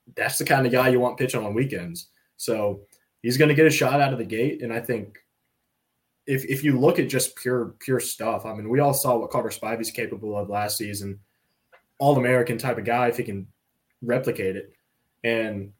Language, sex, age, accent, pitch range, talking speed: English, male, 20-39, American, 110-125 Hz, 215 wpm